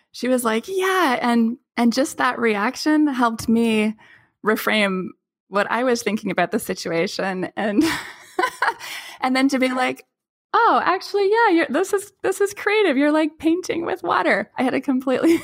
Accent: American